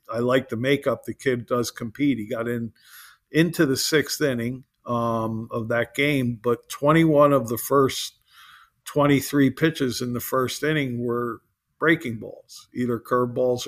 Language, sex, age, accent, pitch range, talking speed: English, male, 50-69, American, 120-140 Hz, 155 wpm